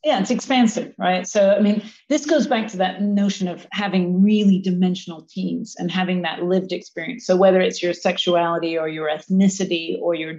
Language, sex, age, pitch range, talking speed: English, female, 40-59, 175-215 Hz, 190 wpm